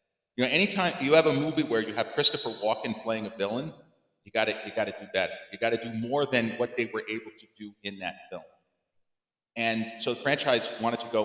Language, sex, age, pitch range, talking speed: English, male, 40-59, 110-140 Hz, 220 wpm